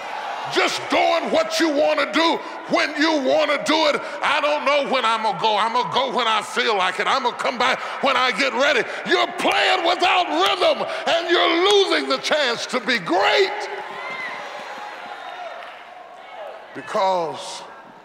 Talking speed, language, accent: 175 wpm, English, American